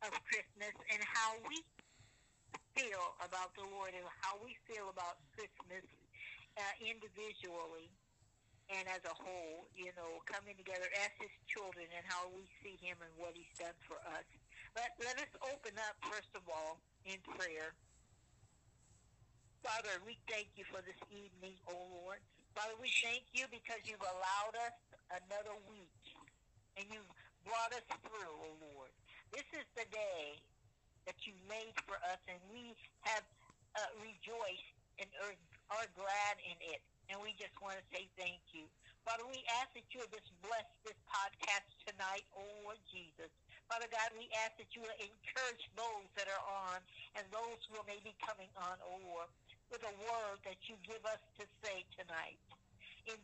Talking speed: 170 wpm